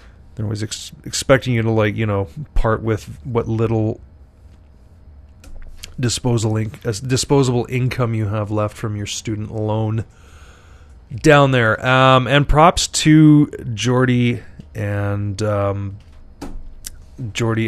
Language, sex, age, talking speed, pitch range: English, male, 30-49, 110 wpm, 100-120 Hz